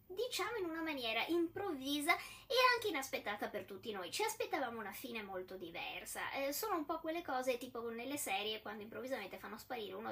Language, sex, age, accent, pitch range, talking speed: Italian, female, 20-39, native, 210-325 Hz, 185 wpm